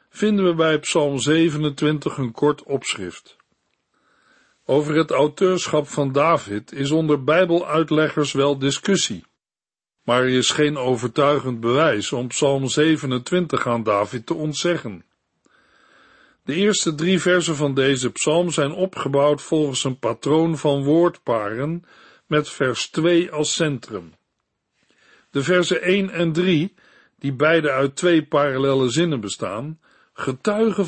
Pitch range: 140-180 Hz